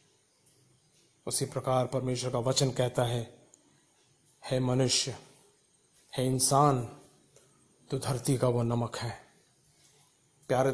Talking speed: 105 wpm